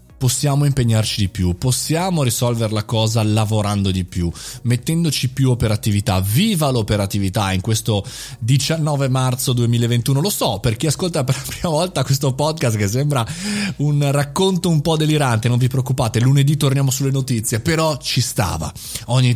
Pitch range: 105-145 Hz